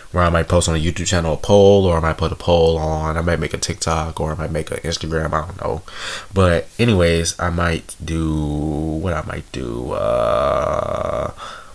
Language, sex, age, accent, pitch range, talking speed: English, male, 20-39, American, 80-95 Hz, 210 wpm